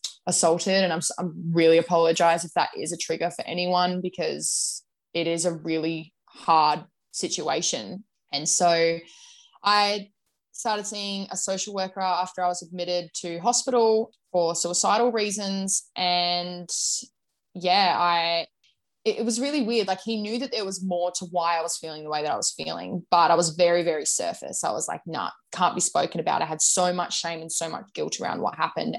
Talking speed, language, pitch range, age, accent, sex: 180 wpm, English, 170-200 Hz, 20-39, Australian, female